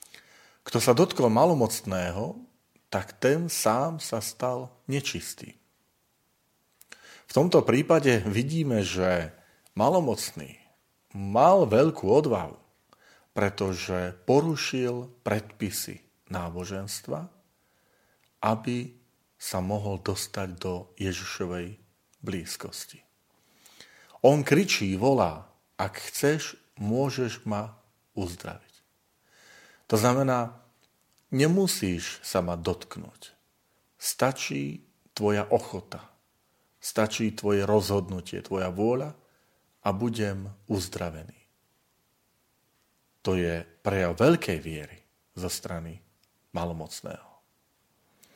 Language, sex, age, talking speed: Slovak, male, 40-59, 80 wpm